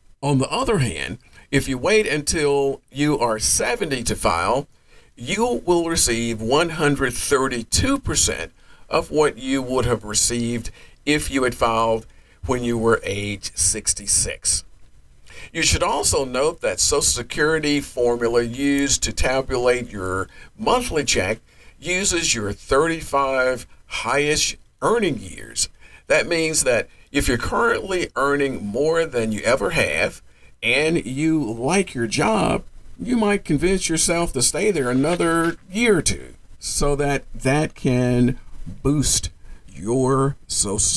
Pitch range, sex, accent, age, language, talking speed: 115-150 Hz, male, American, 50-69, English, 130 wpm